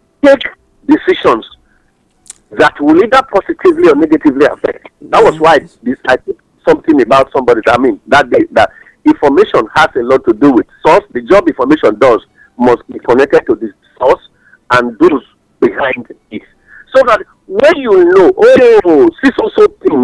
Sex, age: male, 50-69